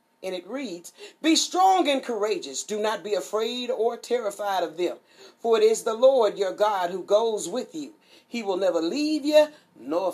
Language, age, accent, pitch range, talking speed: English, 40-59, American, 190-265 Hz, 190 wpm